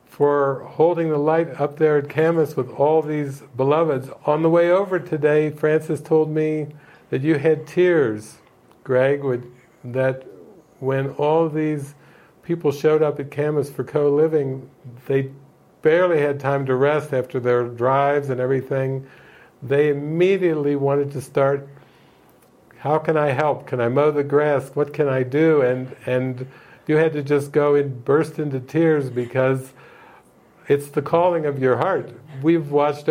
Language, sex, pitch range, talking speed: English, male, 135-155 Hz, 160 wpm